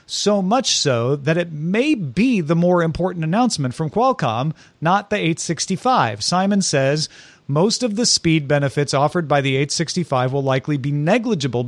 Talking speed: 160 wpm